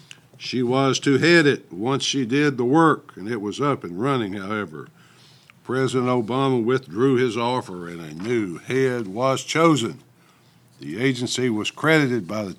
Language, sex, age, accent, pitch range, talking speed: English, male, 60-79, American, 105-135 Hz, 160 wpm